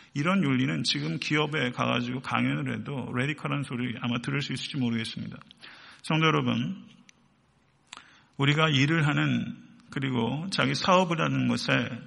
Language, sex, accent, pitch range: Korean, male, native, 125-165 Hz